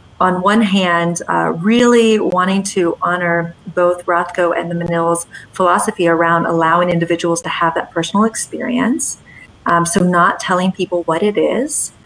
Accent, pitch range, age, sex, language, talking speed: American, 170-200 Hz, 30-49, female, English, 150 wpm